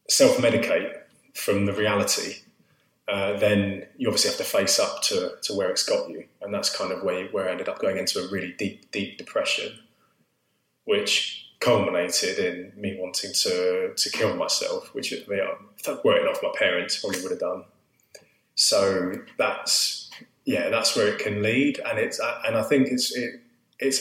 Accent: British